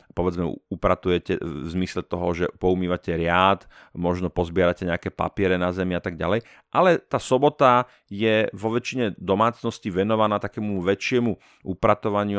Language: Slovak